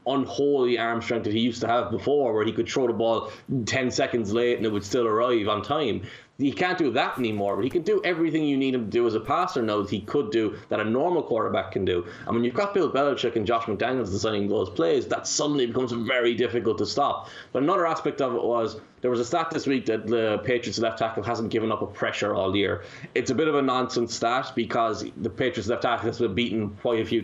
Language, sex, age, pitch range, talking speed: English, male, 20-39, 110-135 Hz, 255 wpm